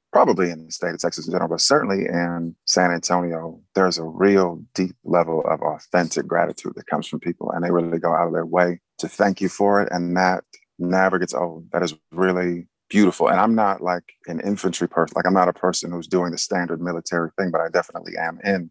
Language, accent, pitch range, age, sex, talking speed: English, American, 85-95 Hz, 30-49, male, 225 wpm